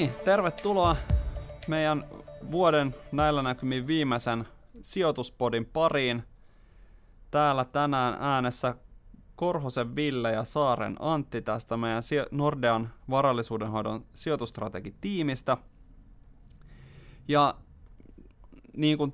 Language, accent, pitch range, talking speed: Finnish, native, 110-140 Hz, 75 wpm